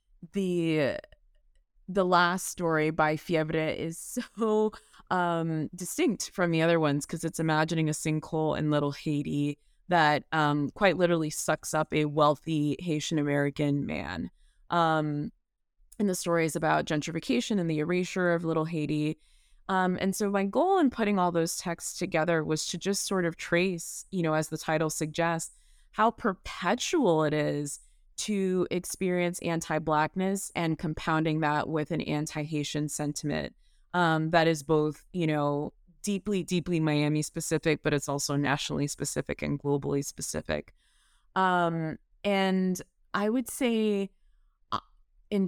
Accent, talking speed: American, 140 wpm